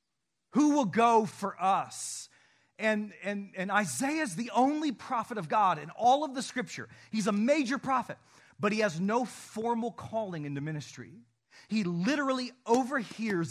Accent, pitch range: American, 145-210 Hz